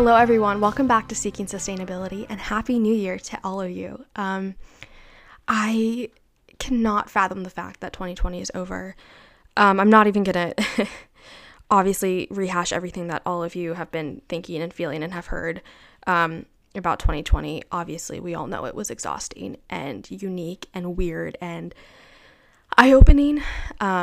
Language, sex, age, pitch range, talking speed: English, female, 10-29, 180-220 Hz, 155 wpm